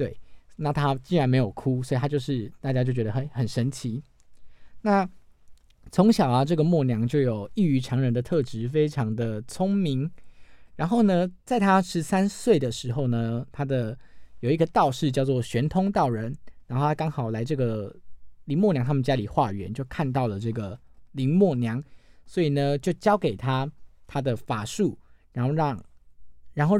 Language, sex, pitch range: Chinese, male, 120-155 Hz